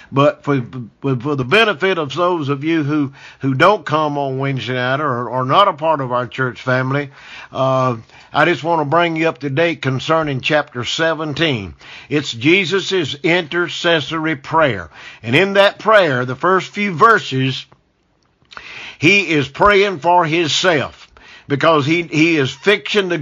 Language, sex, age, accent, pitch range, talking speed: English, male, 50-69, American, 135-180 Hz, 160 wpm